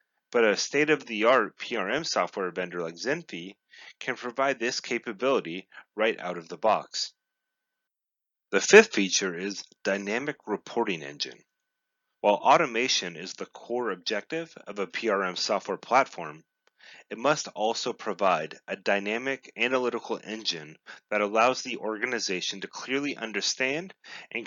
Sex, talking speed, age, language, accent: male, 130 wpm, 30-49, English, American